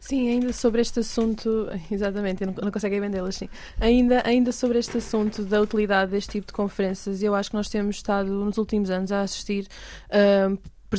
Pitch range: 205-245 Hz